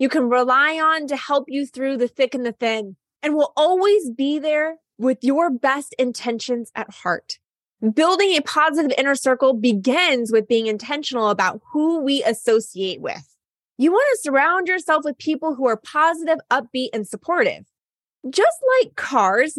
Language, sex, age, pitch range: English, female, 20-39, 220-300 Hz